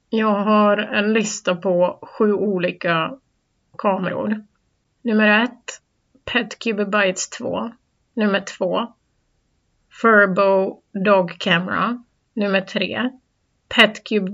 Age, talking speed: 30-49, 90 wpm